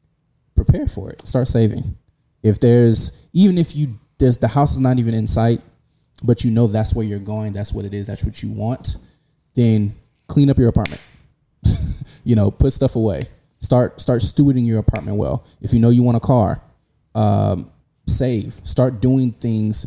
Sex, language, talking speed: male, English, 185 wpm